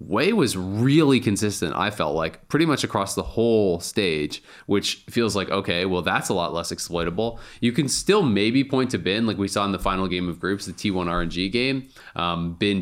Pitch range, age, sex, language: 90-115 Hz, 20-39, male, English